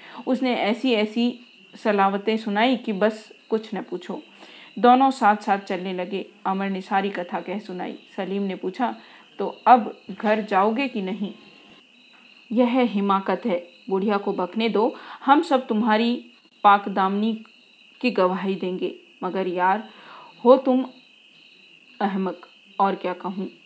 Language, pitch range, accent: Hindi, 190-235 Hz, native